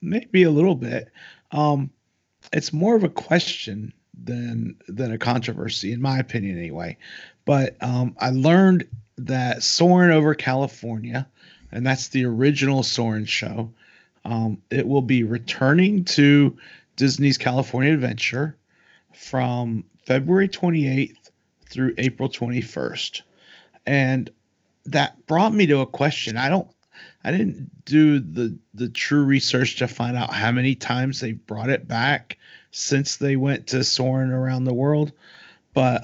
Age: 40-59